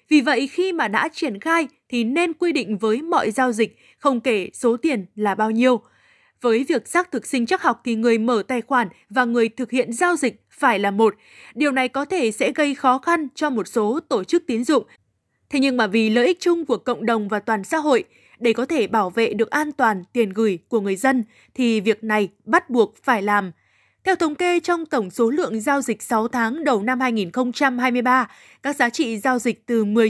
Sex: female